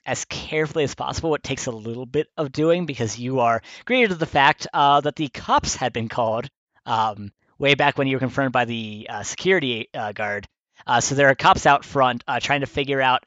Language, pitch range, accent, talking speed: English, 110-140 Hz, American, 225 wpm